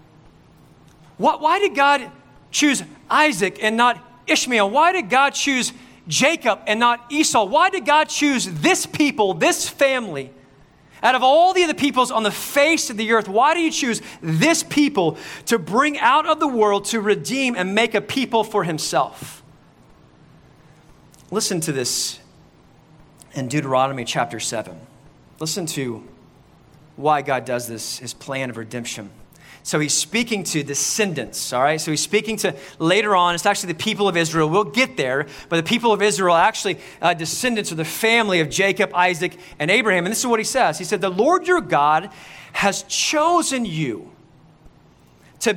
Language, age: English, 30-49